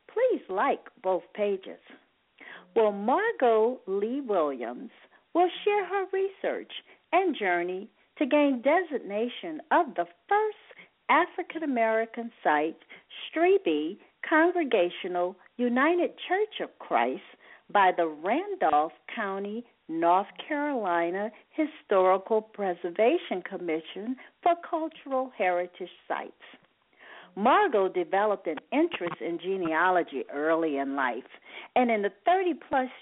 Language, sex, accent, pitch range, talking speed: English, female, American, 185-310 Hz, 100 wpm